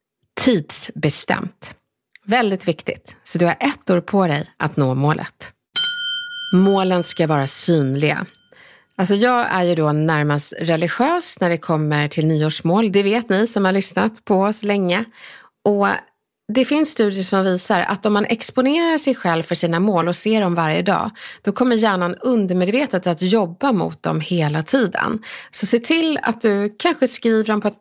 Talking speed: 170 wpm